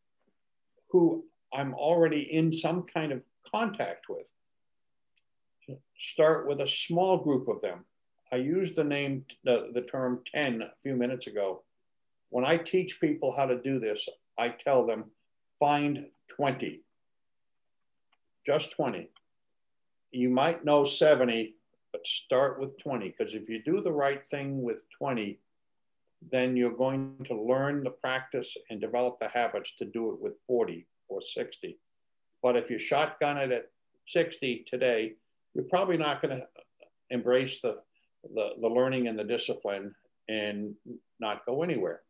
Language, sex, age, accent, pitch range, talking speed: English, male, 60-79, American, 125-165 Hz, 145 wpm